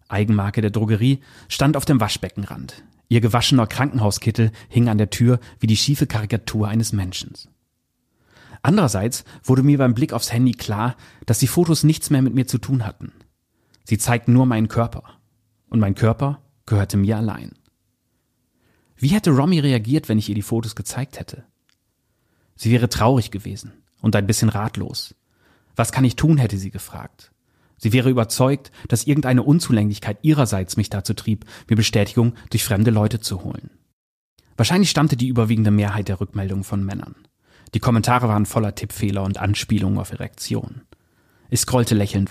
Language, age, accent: German, 30-49, German